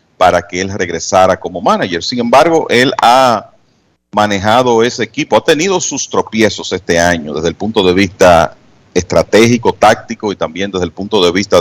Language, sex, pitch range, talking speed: Spanish, male, 90-120 Hz, 170 wpm